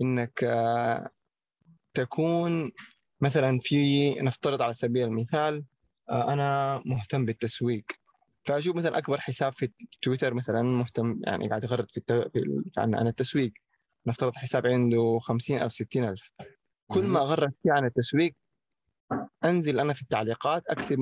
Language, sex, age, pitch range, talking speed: Arabic, male, 20-39, 120-145 Hz, 125 wpm